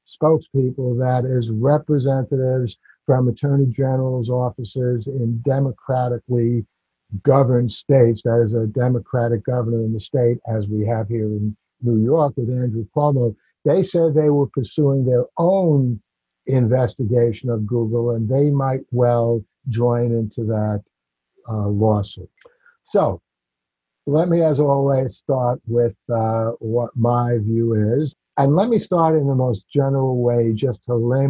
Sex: male